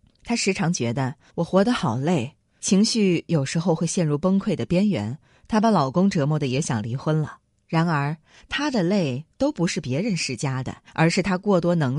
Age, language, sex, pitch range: 20-39, Chinese, female, 145-205 Hz